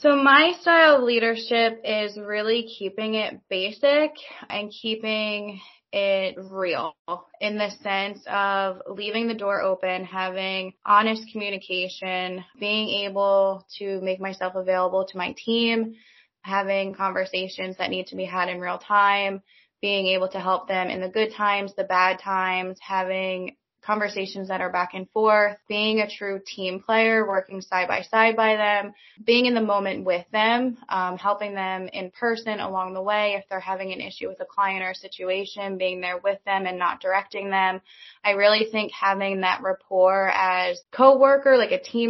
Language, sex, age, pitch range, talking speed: English, female, 20-39, 185-215 Hz, 165 wpm